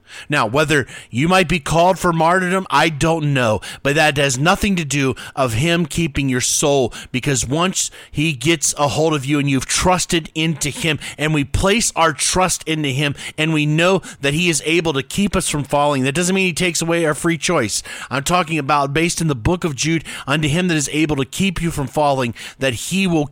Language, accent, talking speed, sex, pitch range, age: English, American, 220 wpm, male, 120-170 Hz, 40-59